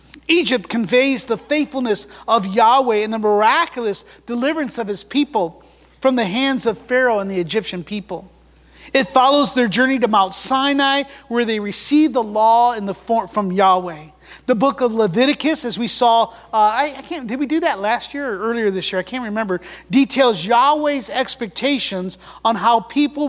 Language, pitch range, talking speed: English, 210-265 Hz, 180 wpm